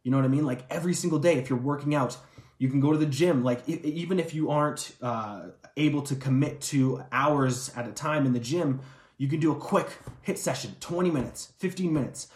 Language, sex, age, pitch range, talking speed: English, male, 20-39, 125-155 Hz, 230 wpm